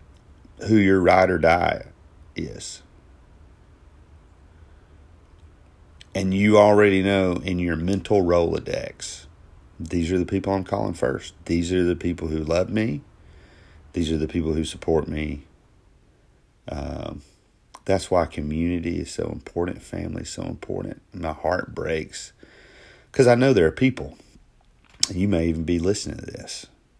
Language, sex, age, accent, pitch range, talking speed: English, male, 40-59, American, 75-95 Hz, 140 wpm